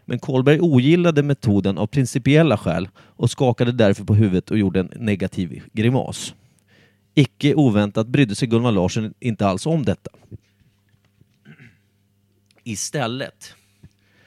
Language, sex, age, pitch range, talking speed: Swedish, male, 30-49, 100-135 Hz, 120 wpm